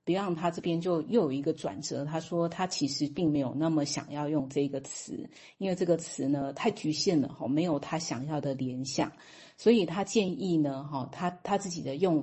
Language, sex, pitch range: Chinese, female, 145-175 Hz